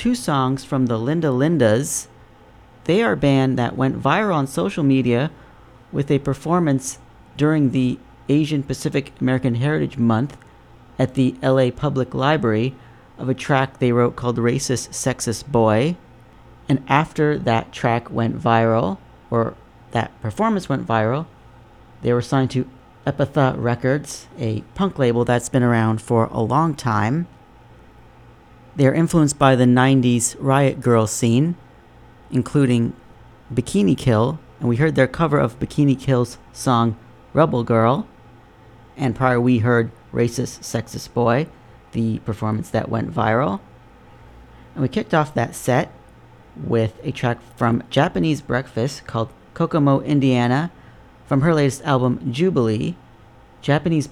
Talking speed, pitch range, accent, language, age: 135 wpm, 115-140 Hz, American, English, 40-59